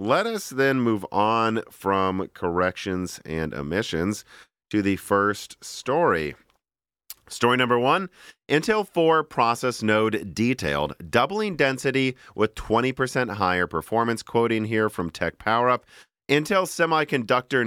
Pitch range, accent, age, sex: 100-135 Hz, American, 40-59, male